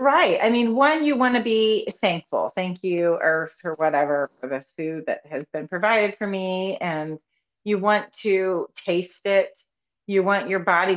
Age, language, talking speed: 30-49, English, 180 wpm